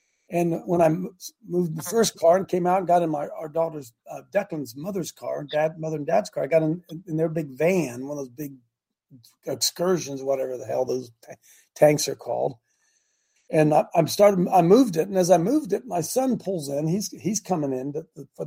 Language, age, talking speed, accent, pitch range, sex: English, 50-69, 220 wpm, American, 150-185 Hz, male